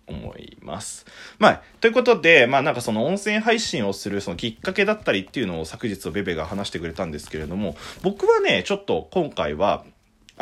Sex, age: male, 20-39